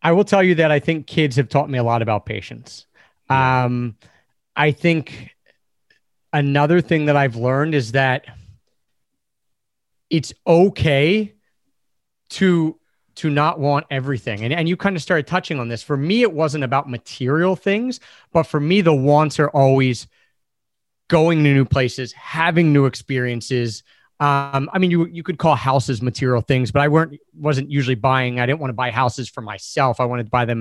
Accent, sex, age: American, male, 30-49